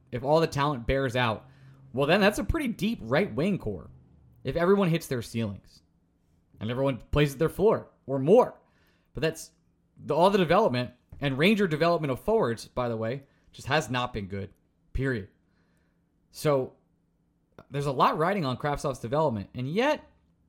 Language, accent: English, American